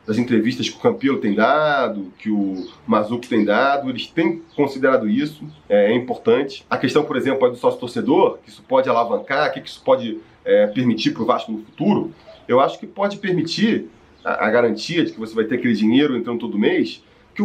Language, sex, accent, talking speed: Portuguese, male, Brazilian, 205 wpm